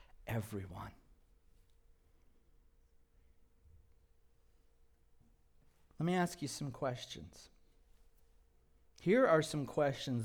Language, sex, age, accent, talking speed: English, male, 50-69, American, 65 wpm